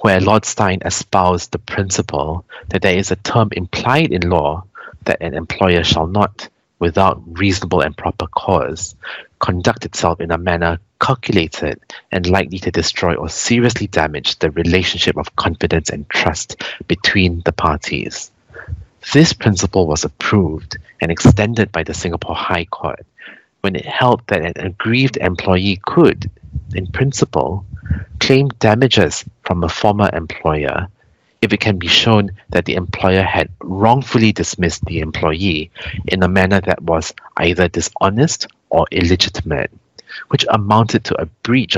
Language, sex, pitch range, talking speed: English, male, 85-110 Hz, 145 wpm